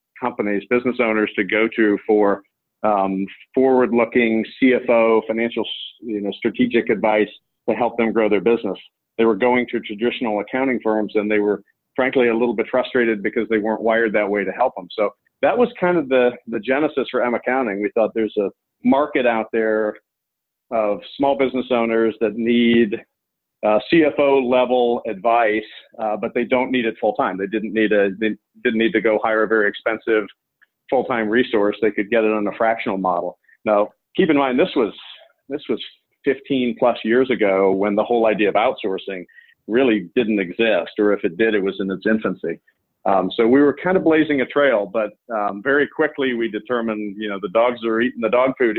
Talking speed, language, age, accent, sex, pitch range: 185 wpm, English, 40-59, American, male, 105-125 Hz